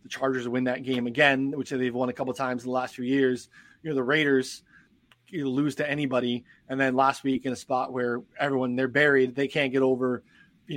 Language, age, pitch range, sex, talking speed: English, 20-39, 125-145 Hz, male, 235 wpm